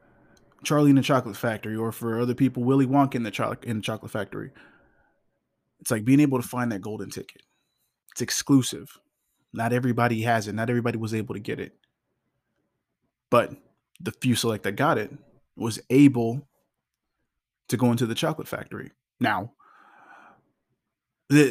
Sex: male